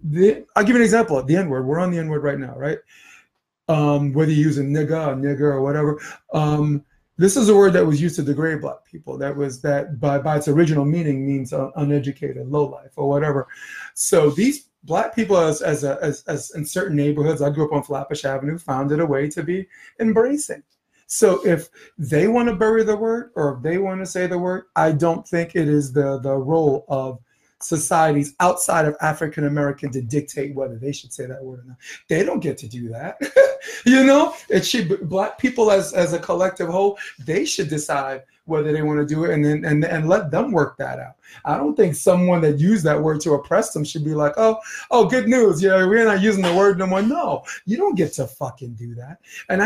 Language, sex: English, male